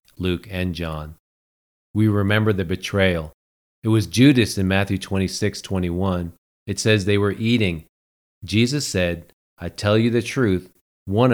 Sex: male